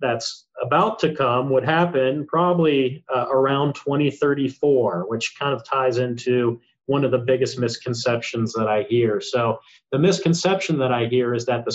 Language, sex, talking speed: English, male, 165 wpm